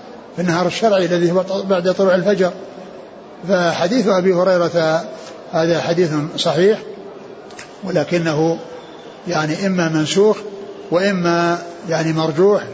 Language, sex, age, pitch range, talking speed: Arabic, male, 60-79, 155-180 Hz, 95 wpm